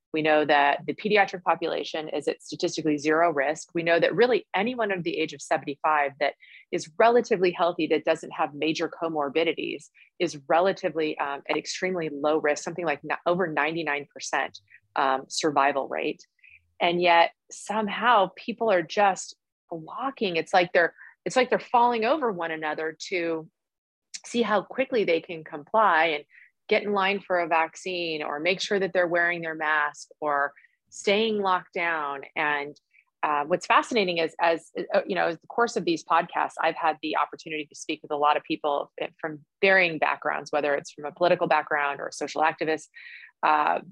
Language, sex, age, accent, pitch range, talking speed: English, female, 30-49, American, 150-185 Hz, 170 wpm